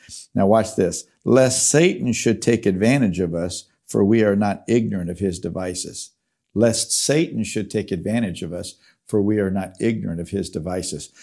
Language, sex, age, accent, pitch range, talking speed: English, male, 50-69, American, 95-115 Hz, 175 wpm